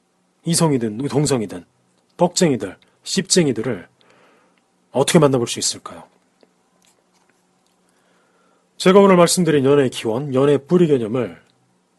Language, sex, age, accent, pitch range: Korean, male, 30-49, native, 115-170 Hz